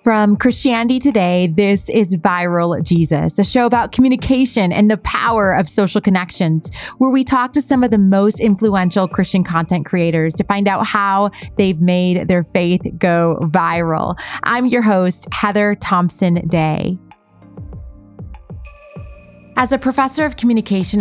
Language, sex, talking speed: English, female, 145 wpm